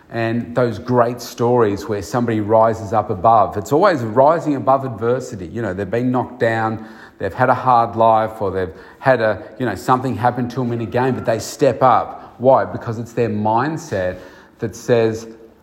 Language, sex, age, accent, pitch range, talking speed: English, male, 40-59, Australian, 95-115 Hz, 190 wpm